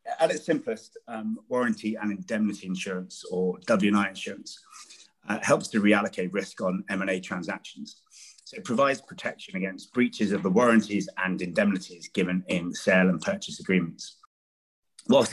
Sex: male